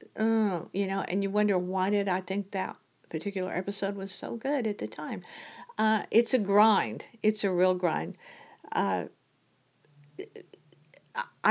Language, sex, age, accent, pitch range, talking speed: English, female, 50-69, American, 175-220 Hz, 145 wpm